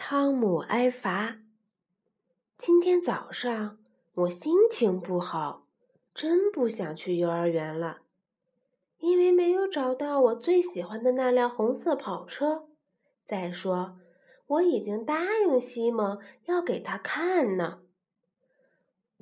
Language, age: Chinese, 20-39